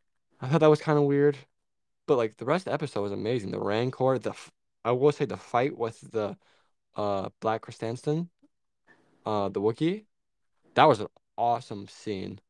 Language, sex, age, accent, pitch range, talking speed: English, male, 20-39, American, 105-140 Hz, 180 wpm